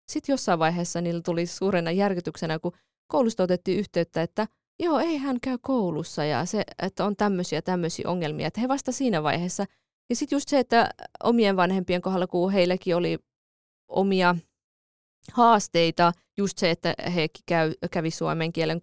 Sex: female